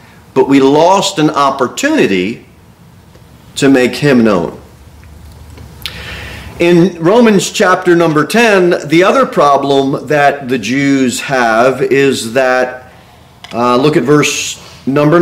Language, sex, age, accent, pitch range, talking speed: English, male, 40-59, American, 130-170 Hz, 110 wpm